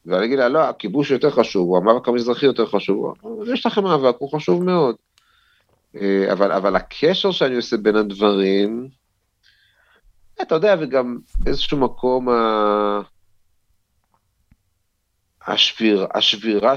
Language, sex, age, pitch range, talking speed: Hebrew, male, 40-59, 100-125 Hz, 105 wpm